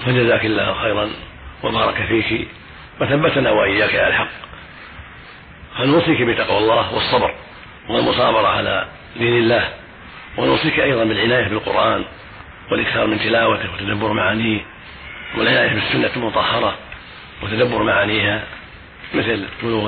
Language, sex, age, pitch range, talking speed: Arabic, male, 40-59, 105-115 Hz, 100 wpm